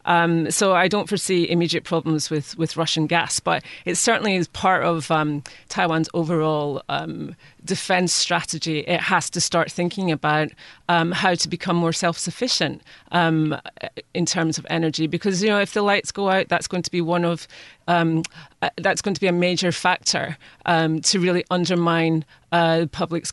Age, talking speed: 30-49, 190 wpm